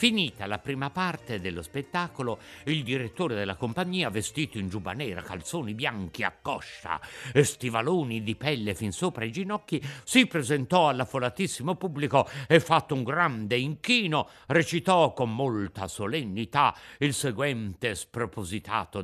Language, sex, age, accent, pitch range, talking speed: Italian, male, 60-79, native, 125-195 Hz, 130 wpm